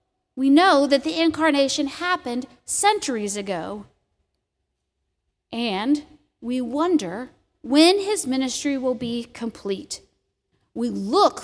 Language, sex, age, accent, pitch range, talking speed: English, female, 40-59, American, 215-295 Hz, 100 wpm